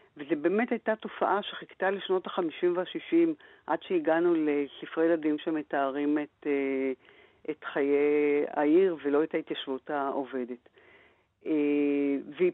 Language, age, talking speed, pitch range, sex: Hebrew, 50-69, 105 wpm, 150-205 Hz, female